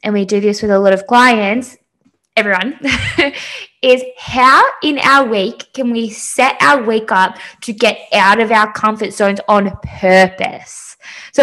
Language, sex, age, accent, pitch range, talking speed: English, female, 10-29, Australian, 200-265 Hz, 165 wpm